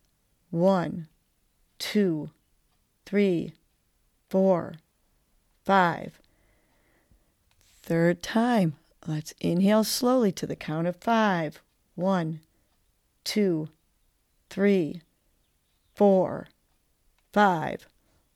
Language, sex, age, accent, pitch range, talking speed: English, female, 40-59, American, 155-195 Hz, 65 wpm